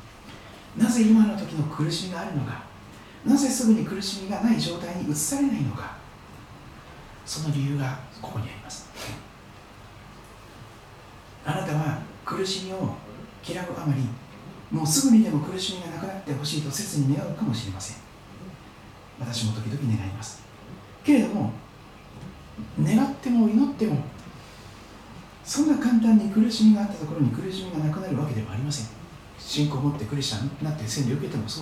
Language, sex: Japanese, male